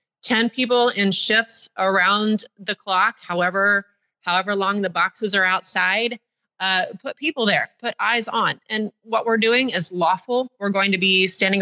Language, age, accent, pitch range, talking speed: English, 30-49, American, 185-225 Hz, 165 wpm